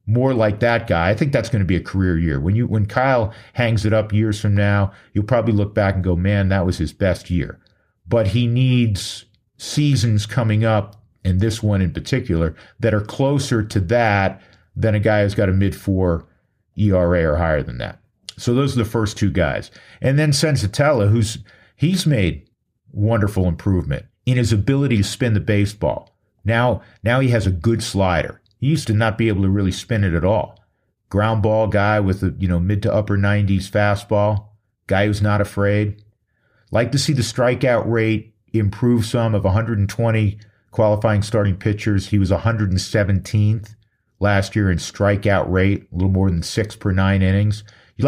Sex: male